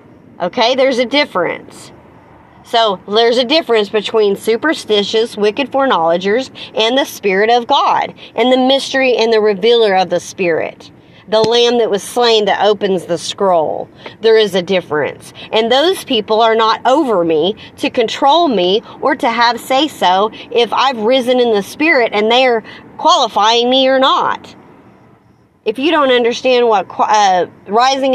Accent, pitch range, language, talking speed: American, 210-265 Hz, English, 155 wpm